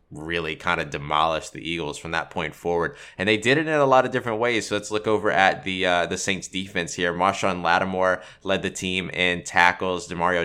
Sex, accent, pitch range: male, American, 90-105 Hz